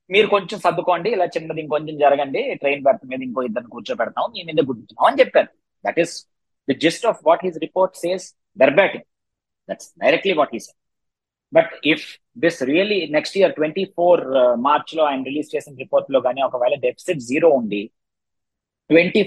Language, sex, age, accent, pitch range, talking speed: Telugu, male, 20-39, native, 145-185 Hz, 125 wpm